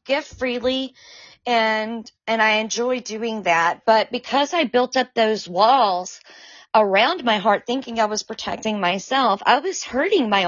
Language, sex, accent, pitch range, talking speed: English, female, American, 200-255 Hz, 155 wpm